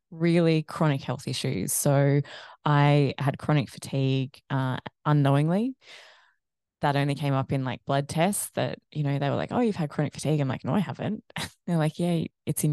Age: 20-39